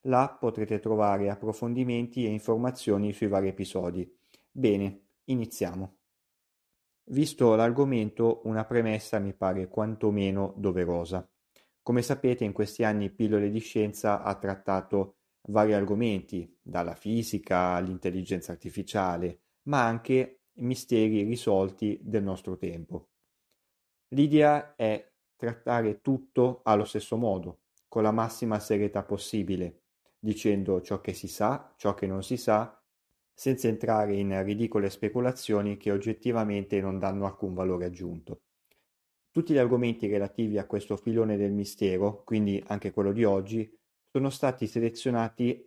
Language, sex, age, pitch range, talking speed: Italian, male, 30-49, 100-120 Hz, 120 wpm